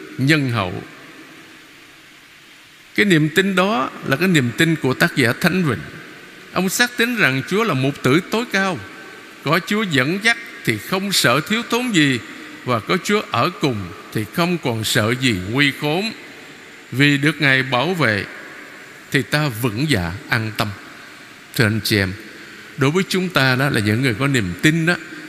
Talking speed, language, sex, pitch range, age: 175 wpm, Vietnamese, male, 120-185 Hz, 60-79